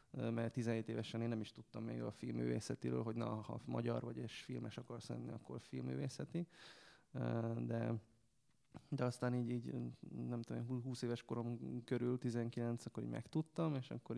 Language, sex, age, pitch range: English, male, 20-39, 110-120 Hz